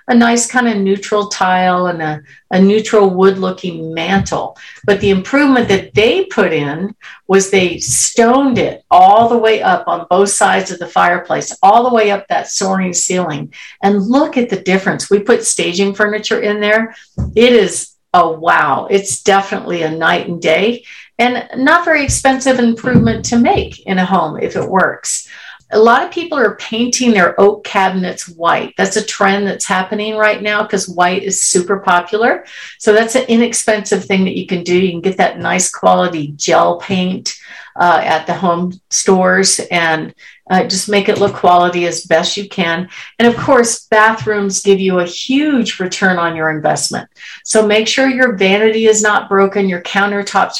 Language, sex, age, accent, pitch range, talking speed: English, female, 50-69, American, 185-220 Hz, 180 wpm